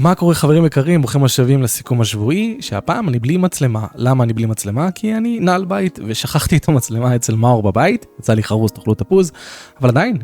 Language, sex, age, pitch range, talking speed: Hebrew, male, 20-39, 110-140 Hz, 195 wpm